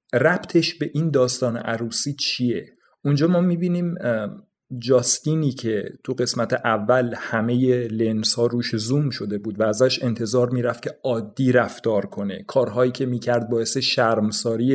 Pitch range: 120-155 Hz